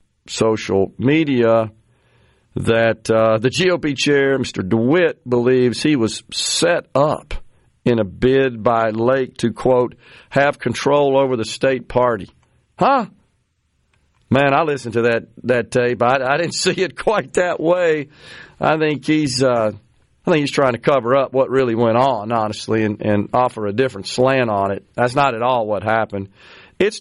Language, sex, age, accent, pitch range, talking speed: English, male, 50-69, American, 115-175 Hz, 165 wpm